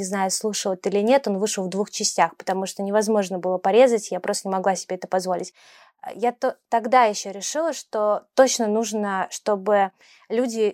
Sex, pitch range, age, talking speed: female, 195-230 Hz, 20-39, 185 wpm